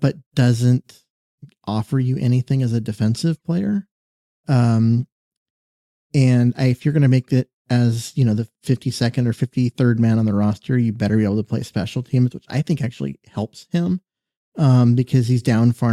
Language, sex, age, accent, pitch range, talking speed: English, male, 30-49, American, 115-135 Hz, 180 wpm